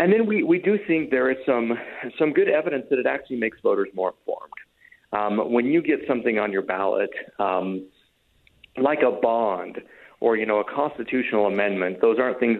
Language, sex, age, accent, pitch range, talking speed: English, male, 40-59, American, 100-140 Hz, 190 wpm